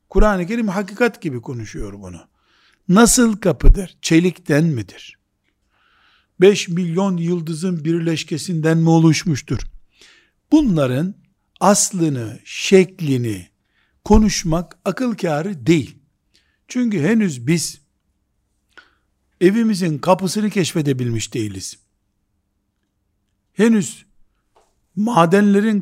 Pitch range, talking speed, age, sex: 120-185 Hz, 75 wpm, 60-79, male